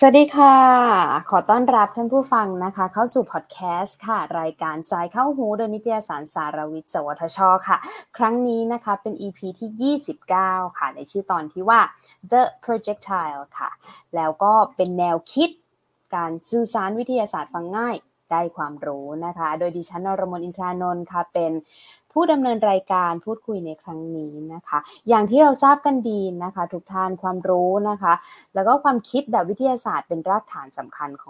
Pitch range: 160-225 Hz